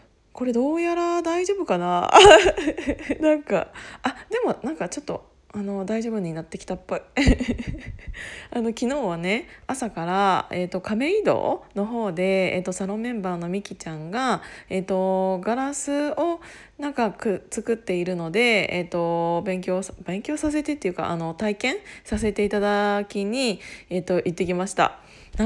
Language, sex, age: Japanese, female, 20-39